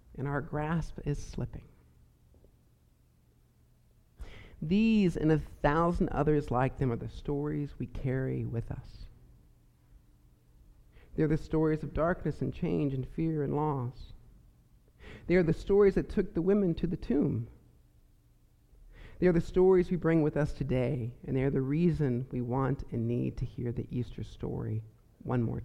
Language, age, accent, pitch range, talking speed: English, 50-69, American, 110-160 Hz, 145 wpm